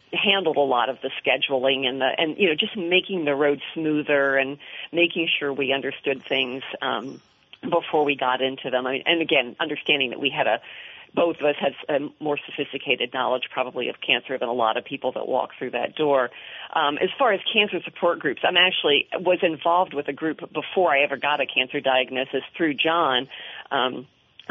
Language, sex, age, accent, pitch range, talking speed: English, female, 40-59, American, 135-165 Hz, 200 wpm